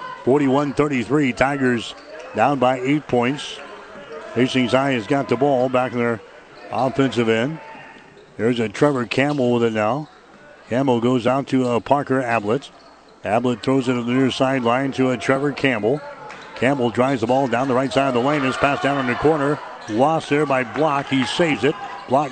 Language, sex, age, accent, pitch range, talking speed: English, male, 60-79, American, 125-145 Hz, 180 wpm